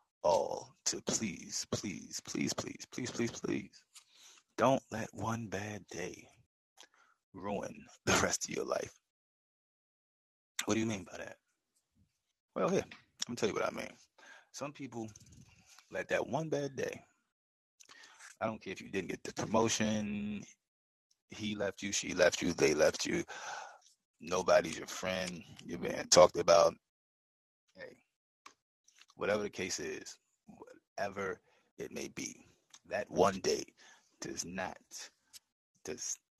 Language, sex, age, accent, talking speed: English, male, 30-49, American, 140 wpm